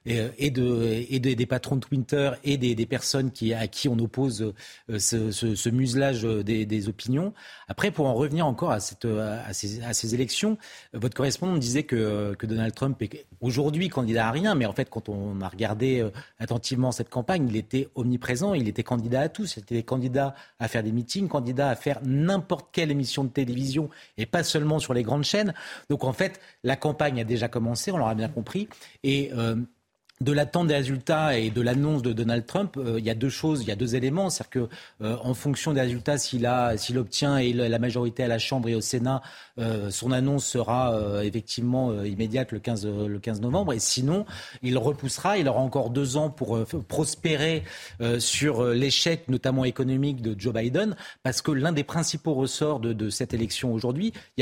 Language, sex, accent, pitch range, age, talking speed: French, male, French, 115-145 Hz, 40-59, 210 wpm